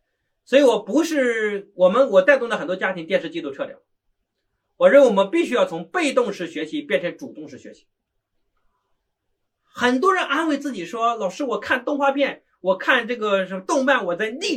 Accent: native